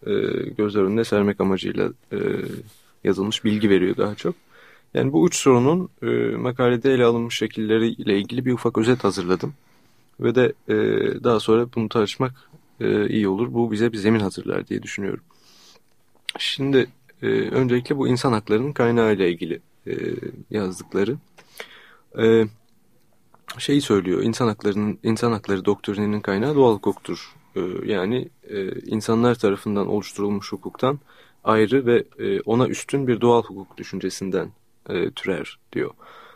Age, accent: 30-49, native